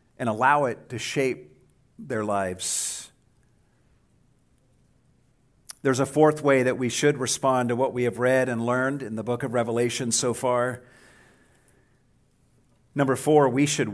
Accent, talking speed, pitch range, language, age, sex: American, 140 wpm, 120-155 Hz, English, 50-69, male